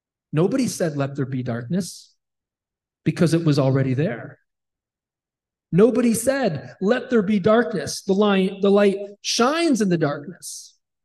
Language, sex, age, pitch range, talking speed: English, male, 40-59, 170-230 Hz, 125 wpm